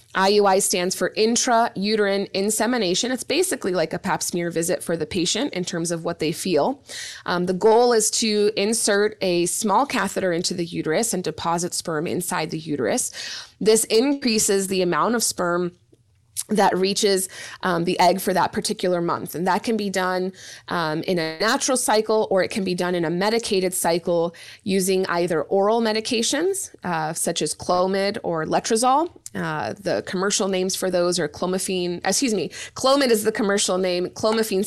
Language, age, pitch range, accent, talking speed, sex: English, 20-39, 175-210 Hz, American, 170 wpm, female